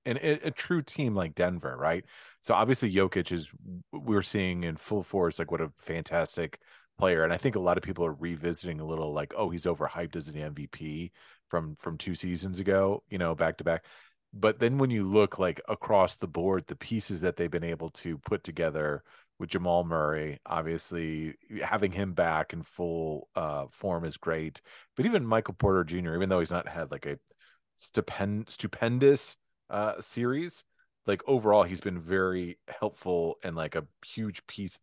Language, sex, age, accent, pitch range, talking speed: English, male, 30-49, American, 80-100 Hz, 185 wpm